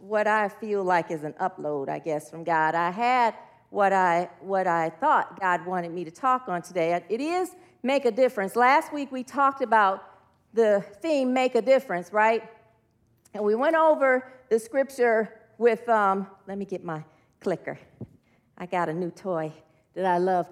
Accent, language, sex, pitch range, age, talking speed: American, English, female, 190-275 Hz, 40-59, 180 wpm